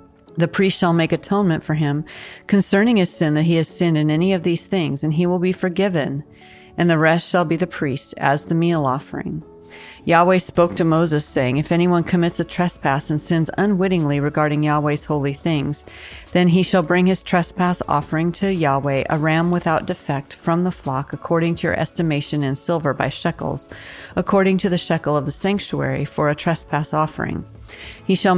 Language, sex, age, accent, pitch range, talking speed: English, female, 40-59, American, 145-175 Hz, 190 wpm